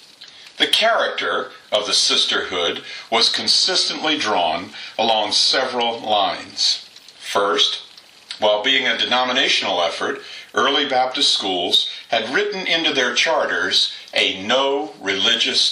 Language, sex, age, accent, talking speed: English, male, 50-69, American, 105 wpm